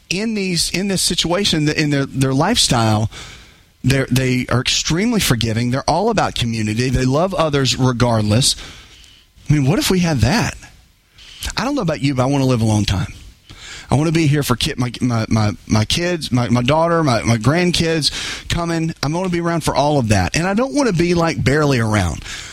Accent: American